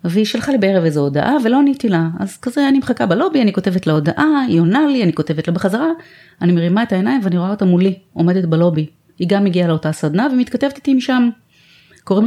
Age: 30-49